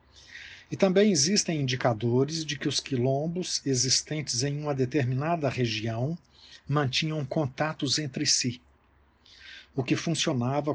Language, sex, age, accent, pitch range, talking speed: Portuguese, male, 60-79, Brazilian, 120-150 Hz, 110 wpm